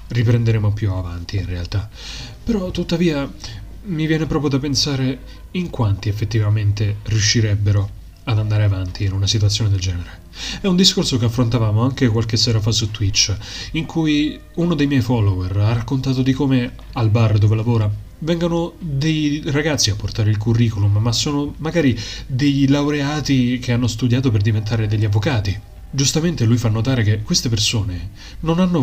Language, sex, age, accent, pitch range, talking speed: Italian, male, 30-49, native, 105-135 Hz, 160 wpm